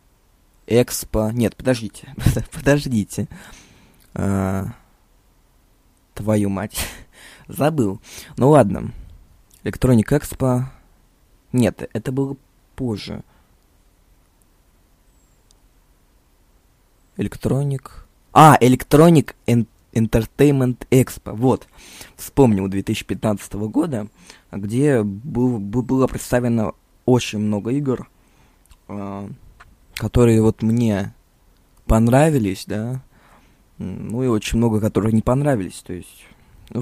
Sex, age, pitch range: male, 20-39, 100-125 Hz